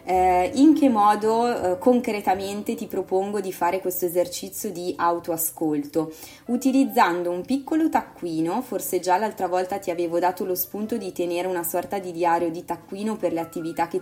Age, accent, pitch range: 20-39, native, 170-240 Hz